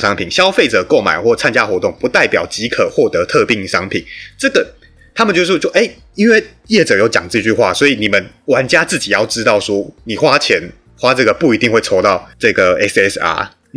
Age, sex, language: 30-49, male, Chinese